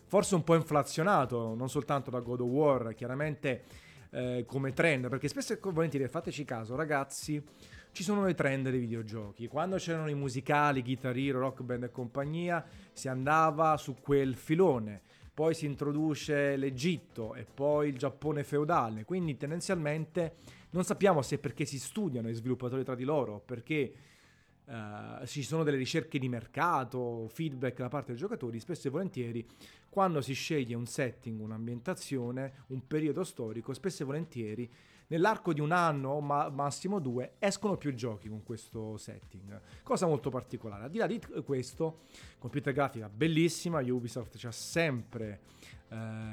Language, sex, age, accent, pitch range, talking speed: Italian, male, 30-49, native, 120-155 Hz, 155 wpm